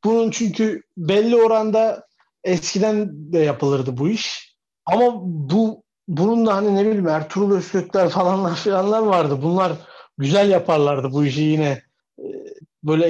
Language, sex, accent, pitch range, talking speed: Turkish, male, native, 160-215 Hz, 130 wpm